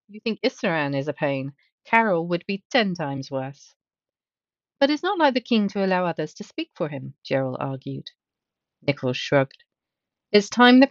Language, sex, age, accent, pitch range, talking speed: English, female, 40-59, British, 150-210 Hz, 175 wpm